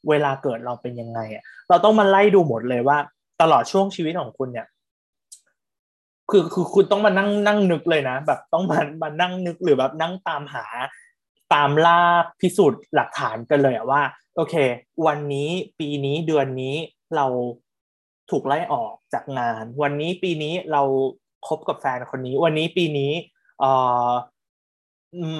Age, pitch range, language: 20-39, 130-170 Hz, Thai